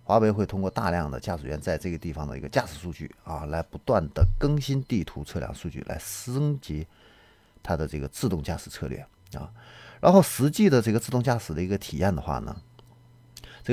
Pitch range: 80-120 Hz